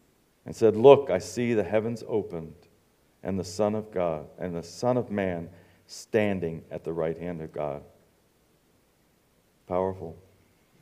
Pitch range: 90-115 Hz